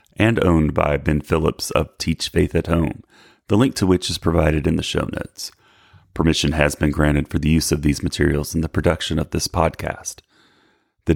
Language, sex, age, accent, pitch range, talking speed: English, male, 30-49, American, 80-90 Hz, 200 wpm